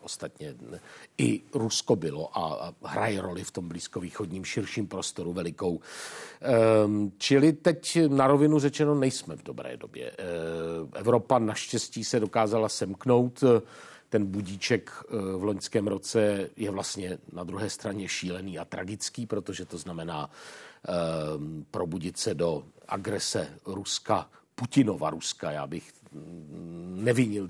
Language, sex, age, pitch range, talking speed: Czech, male, 50-69, 95-115 Hz, 115 wpm